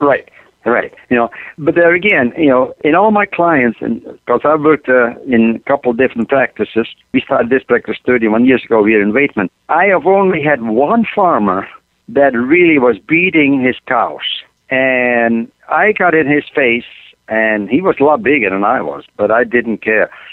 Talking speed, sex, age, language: 185 wpm, male, 60-79, English